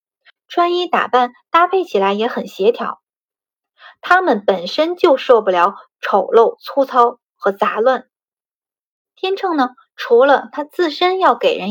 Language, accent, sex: Chinese, native, female